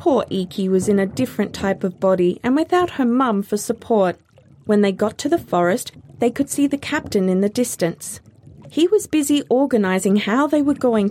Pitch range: 190-305 Hz